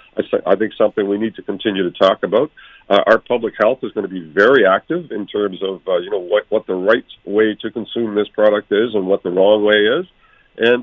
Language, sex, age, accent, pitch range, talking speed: English, male, 50-69, American, 105-135 Hz, 240 wpm